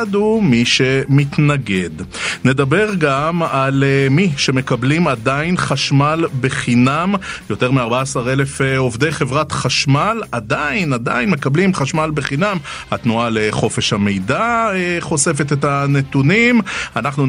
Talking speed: 100 wpm